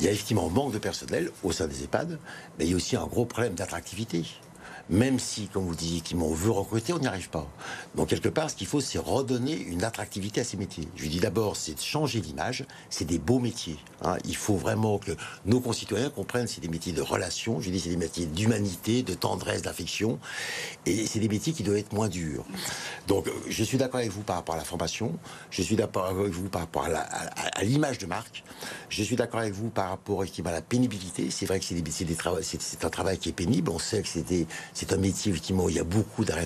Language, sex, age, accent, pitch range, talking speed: French, male, 60-79, French, 85-115 Hz, 250 wpm